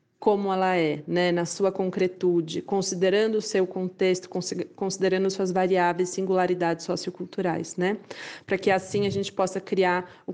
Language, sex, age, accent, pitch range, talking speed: Portuguese, female, 20-39, Brazilian, 185-220 Hz, 145 wpm